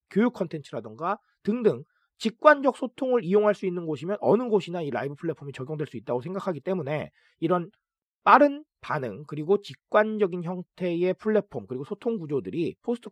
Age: 30-49